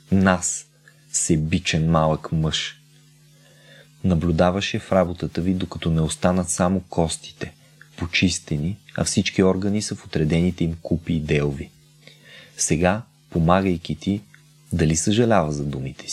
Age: 30-49